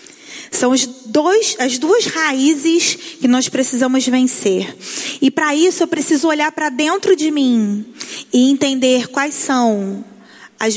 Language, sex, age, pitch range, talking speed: Portuguese, female, 20-39, 225-290 Hz, 135 wpm